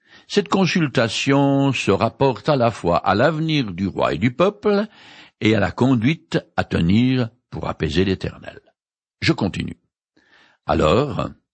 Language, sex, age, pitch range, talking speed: French, male, 60-79, 100-150 Hz, 135 wpm